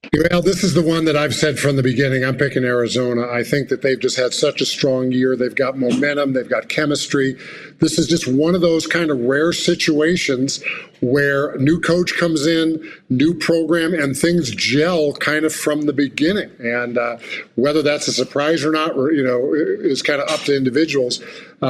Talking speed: 200 wpm